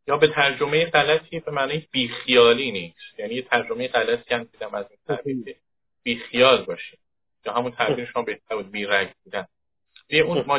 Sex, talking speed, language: male, 165 wpm, Persian